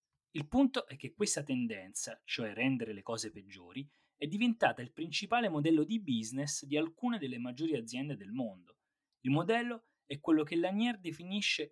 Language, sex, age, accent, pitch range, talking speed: Italian, male, 30-49, native, 135-210 Hz, 165 wpm